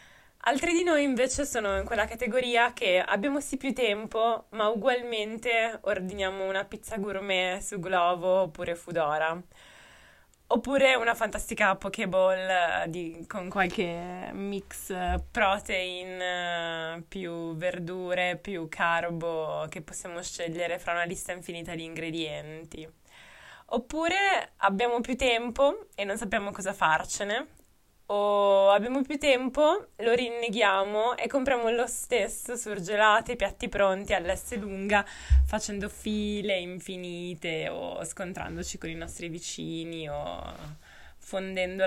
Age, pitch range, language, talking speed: 20-39, 175-235 Hz, Italian, 115 wpm